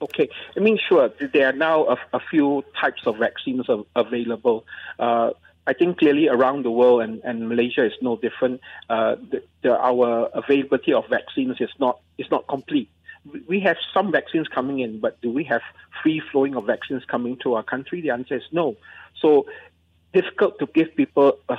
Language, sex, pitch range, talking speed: English, male, 120-150 Hz, 180 wpm